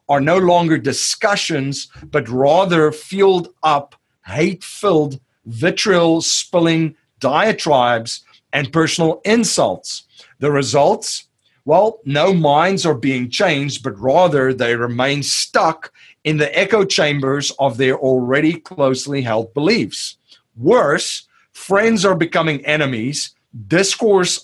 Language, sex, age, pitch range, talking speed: English, male, 40-59, 135-185 Hz, 105 wpm